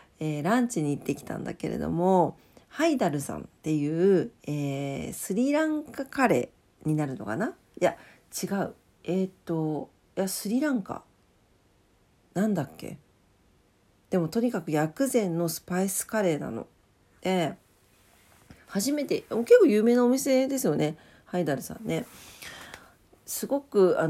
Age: 40-59